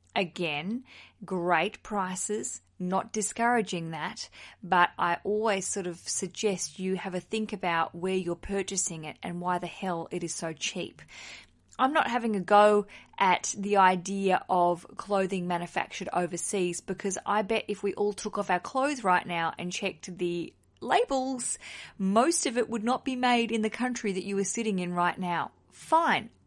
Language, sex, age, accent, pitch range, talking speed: English, female, 20-39, Australian, 180-220 Hz, 170 wpm